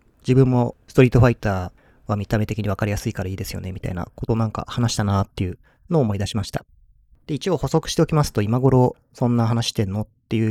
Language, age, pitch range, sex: Japanese, 30-49, 105-135 Hz, male